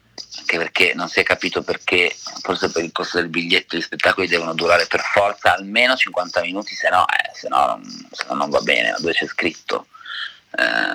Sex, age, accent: male, 40-59, native